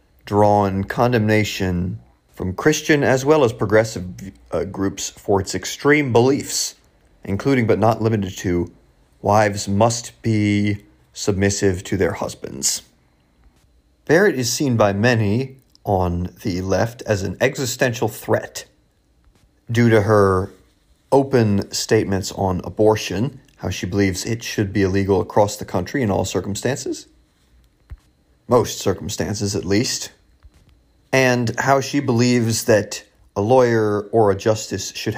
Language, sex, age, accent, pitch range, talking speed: English, male, 30-49, American, 95-115 Hz, 125 wpm